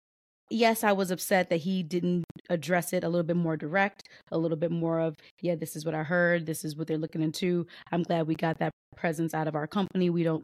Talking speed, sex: 245 wpm, female